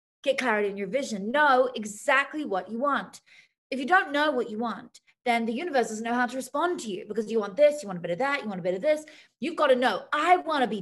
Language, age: English, 30-49